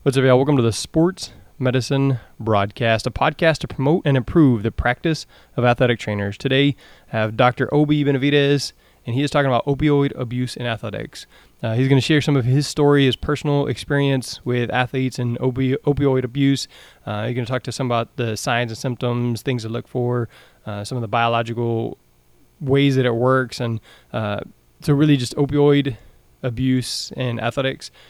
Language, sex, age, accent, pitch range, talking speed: English, male, 20-39, American, 120-140 Hz, 185 wpm